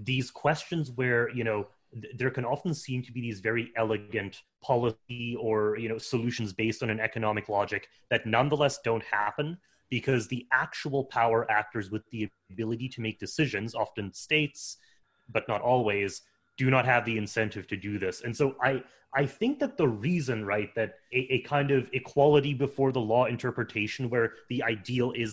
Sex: male